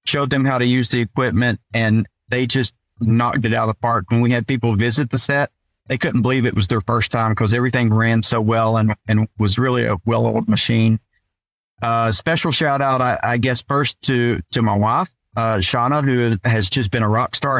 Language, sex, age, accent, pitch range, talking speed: English, male, 40-59, American, 115-130 Hz, 220 wpm